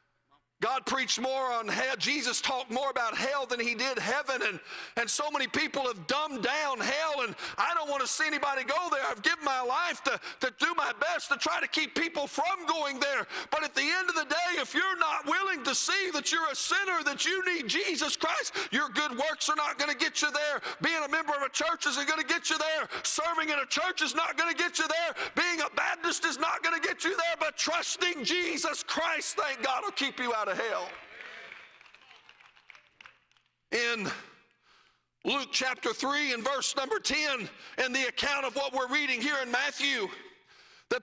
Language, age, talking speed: English, 50-69, 210 wpm